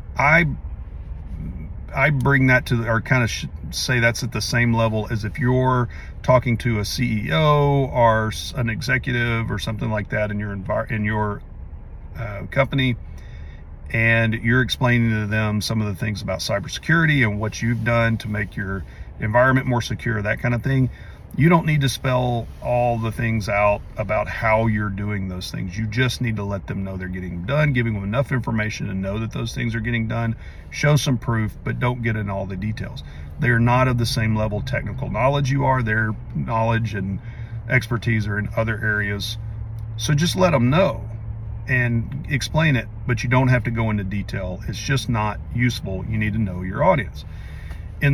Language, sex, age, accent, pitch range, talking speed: English, male, 40-59, American, 100-125 Hz, 190 wpm